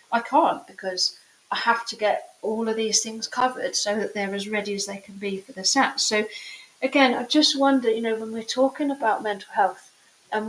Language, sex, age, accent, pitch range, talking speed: English, female, 40-59, British, 200-235 Hz, 205 wpm